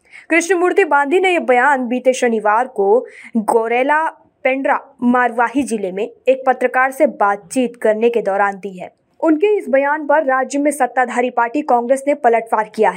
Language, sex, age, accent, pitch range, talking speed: Hindi, female, 20-39, native, 235-290 Hz, 155 wpm